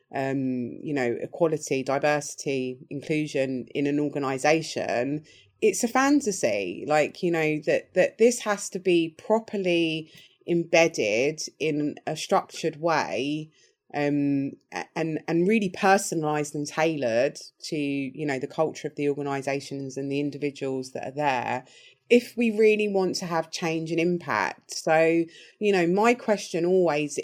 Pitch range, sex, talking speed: 145-190 Hz, female, 140 wpm